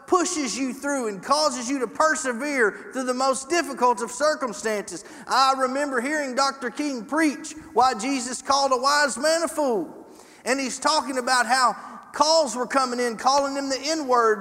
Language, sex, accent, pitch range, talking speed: English, male, American, 260-320 Hz, 175 wpm